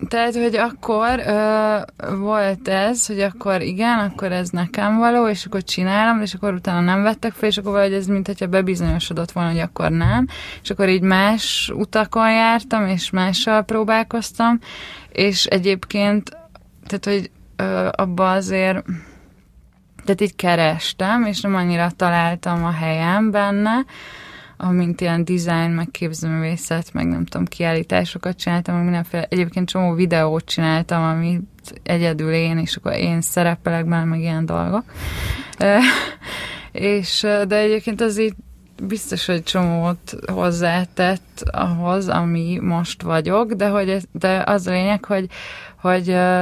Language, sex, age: Hungarian, female, 20-39